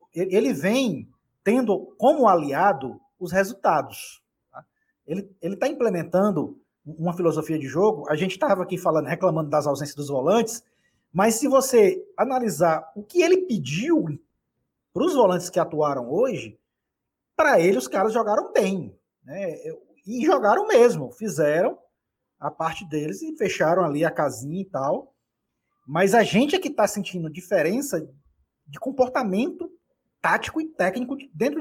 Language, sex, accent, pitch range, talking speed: Portuguese, male, Brazilian, 165-255 Hz, 140 wpm